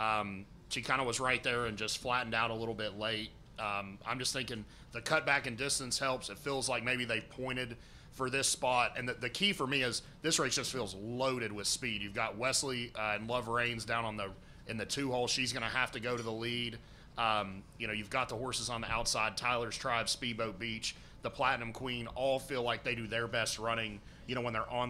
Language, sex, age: English, male, 30-49